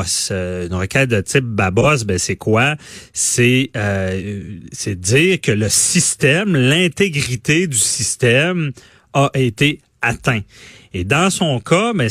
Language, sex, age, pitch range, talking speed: French, male, 30-49, 100-135 Hz, 130 wpm